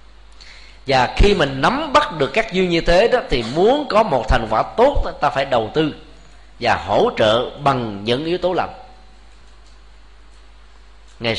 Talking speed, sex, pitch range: 170 wpm, male, 120-175 Hz